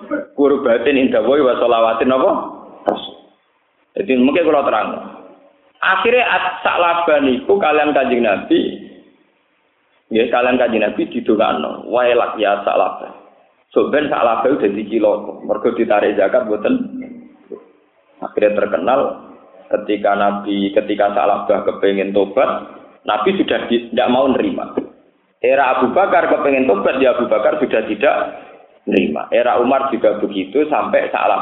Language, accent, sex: Indonesian, native, male